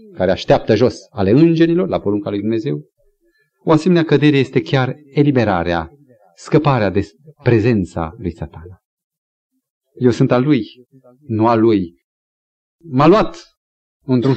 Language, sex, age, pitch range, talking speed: Romanian, male, 40-59, 115-170 Hz, 125 wpm